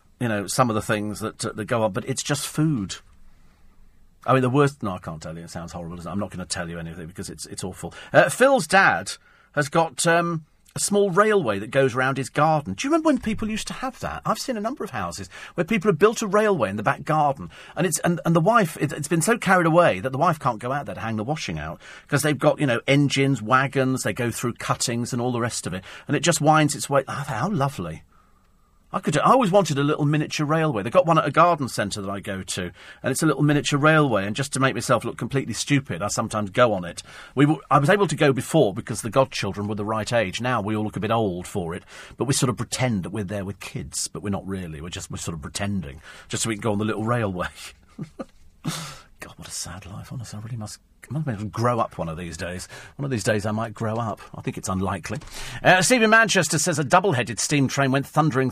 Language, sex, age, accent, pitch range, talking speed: English, male, 40-59, British, 105-170 Hz, 260 wpm